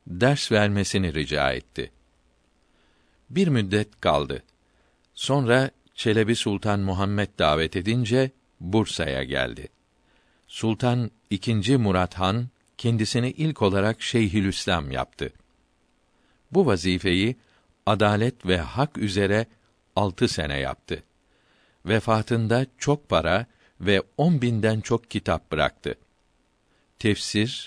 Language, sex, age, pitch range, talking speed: Turkish, male, 50-69, 90-115 Hz, 95 wpm